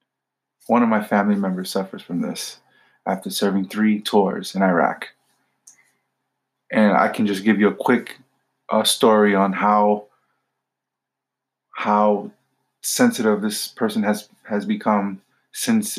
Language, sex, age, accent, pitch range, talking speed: English, male, 20-39, American, 100-115 Hz, 130 wpm